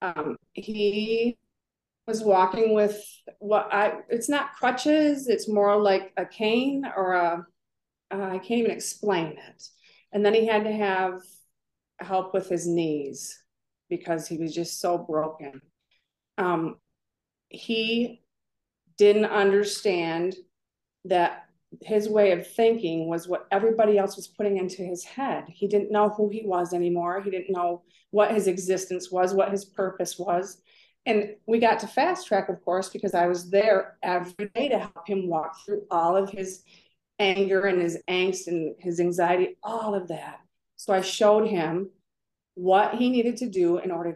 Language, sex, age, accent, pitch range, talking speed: English, female, 30-49, American, 175-210 Hz, 160 wpm